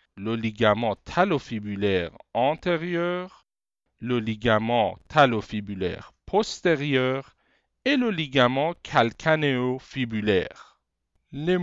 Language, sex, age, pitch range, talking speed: French, male, 50-69, 105-145 Hz, 65 wpm